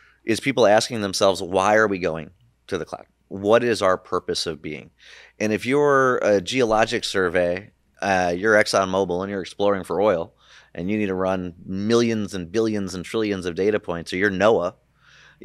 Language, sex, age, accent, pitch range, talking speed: English, male, 30-49, American, 90-105 Hz, 185 wpm